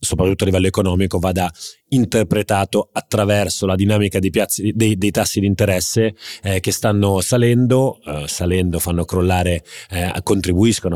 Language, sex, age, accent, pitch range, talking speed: Italian, male, 30-49, native, 95-110 Hz, 140 wpm